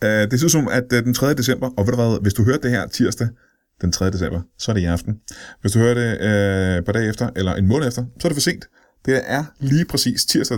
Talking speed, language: 265 wpm, Danish